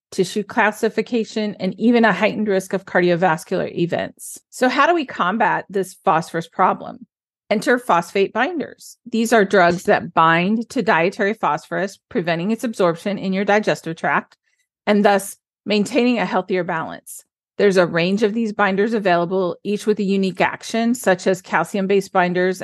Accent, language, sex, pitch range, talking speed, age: American, English, female, 185-220 Hz, 155 wpm, 40-59